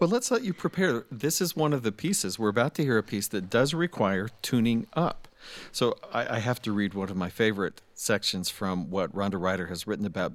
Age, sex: 50-69, male